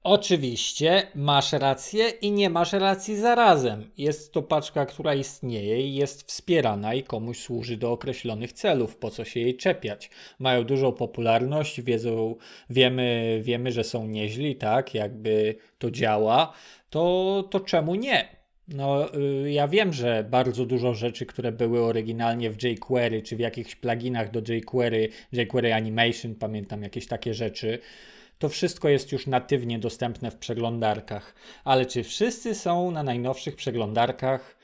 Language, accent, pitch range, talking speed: Polish, native, 120-150 Hz, 145 wpm